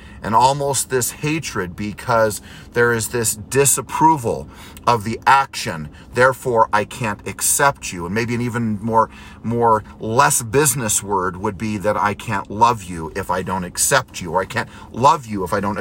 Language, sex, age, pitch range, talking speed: English, male, 40-59, 115-185 Hz, 175 wpm